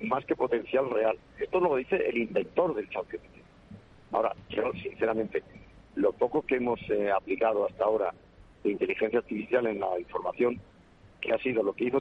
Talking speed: 170 wpm